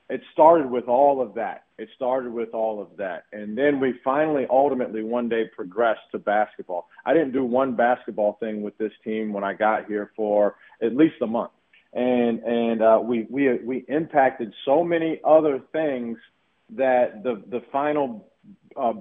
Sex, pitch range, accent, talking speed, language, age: male, 110-130 Hz, American, 175 wpm, English, 40-59